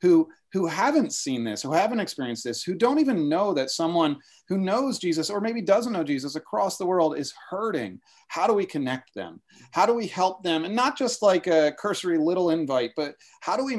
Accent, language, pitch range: American, English, 135-205 Hz